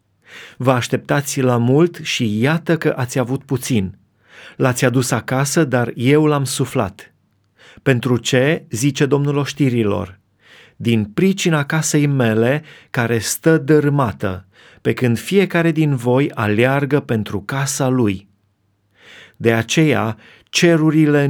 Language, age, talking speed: Romanian, 30-49, 115 wpm